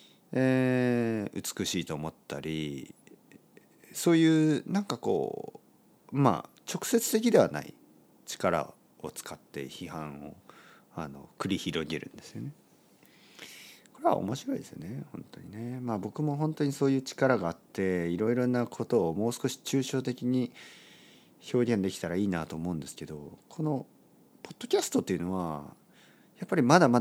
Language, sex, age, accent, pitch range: Japanese, male, 40-59, native, 95-145 Hz